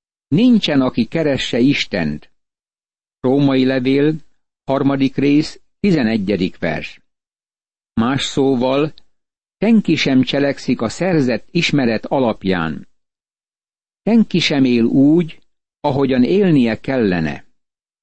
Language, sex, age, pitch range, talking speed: Hungarian, male, 60-79, 125-155 Hz, 85 wpm